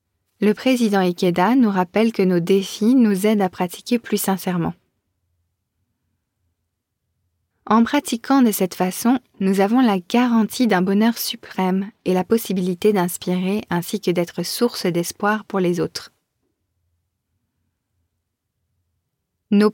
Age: 20-39